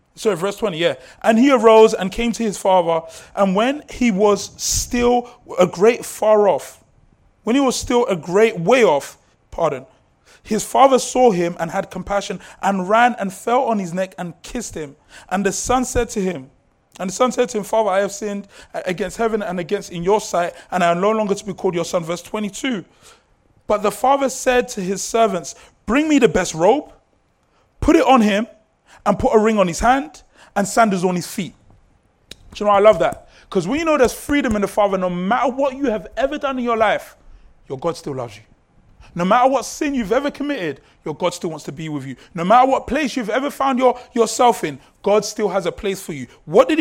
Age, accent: 20-39, Nigerian